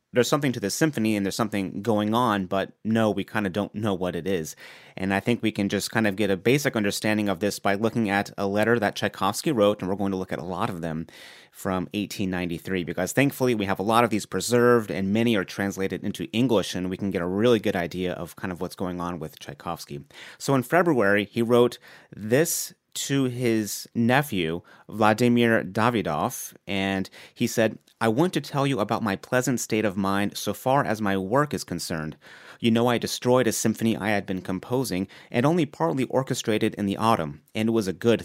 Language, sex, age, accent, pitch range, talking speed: English, male, 30-49, American, 95-120 Hz, 215 wpm